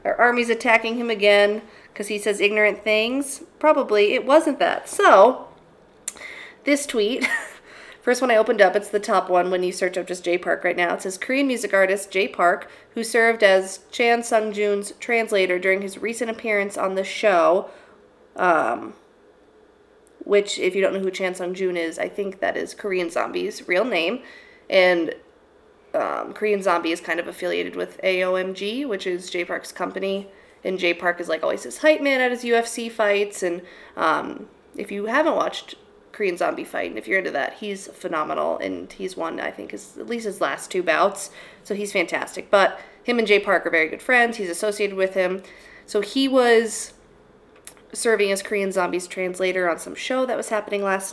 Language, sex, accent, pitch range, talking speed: English, female, American, 185-235 Hz, 190 wpm